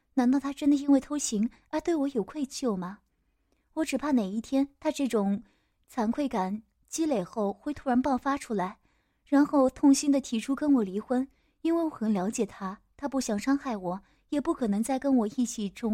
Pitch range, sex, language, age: 220-290 Hz, female, Chinese, 20-39